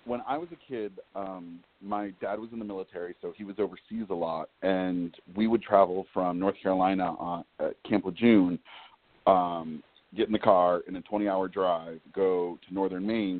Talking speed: 190 wpm